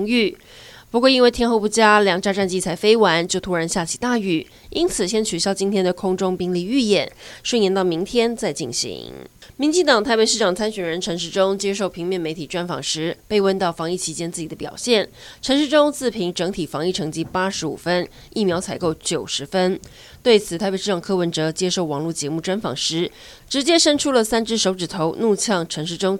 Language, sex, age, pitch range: Chinese, female, 20-39, 175-225 Hz